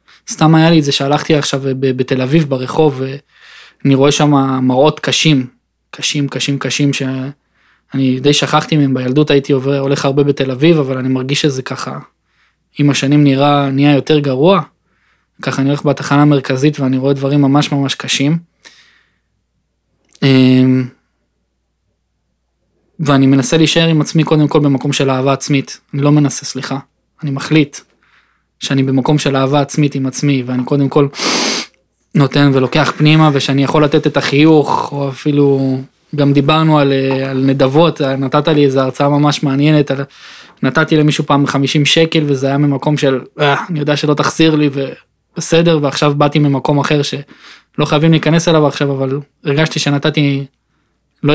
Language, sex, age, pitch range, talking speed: Hebrew, male, 20-39, 135-150 Hz, 150 wpm